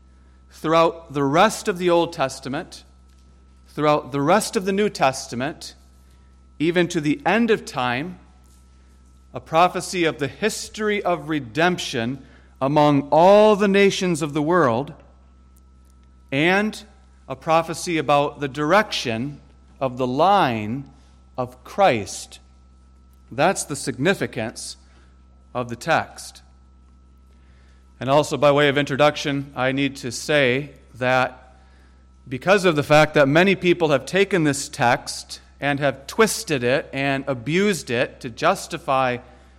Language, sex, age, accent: English, male, 40-59, American